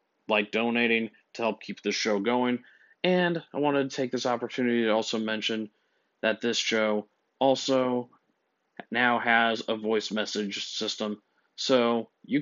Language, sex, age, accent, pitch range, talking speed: English, male, 30-49, American, 110-125 Hz, 145 wpm